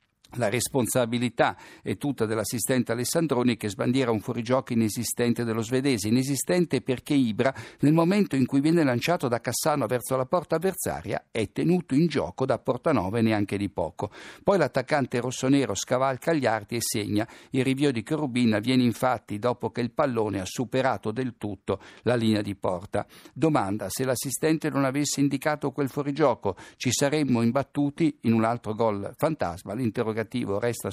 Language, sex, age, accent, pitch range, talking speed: Italian, male, 50-69, native, 115-145 Hz, 155 wpm